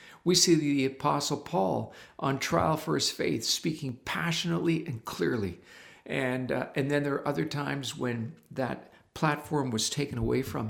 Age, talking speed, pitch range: 50-69, 165 wpm, 115-150 Hz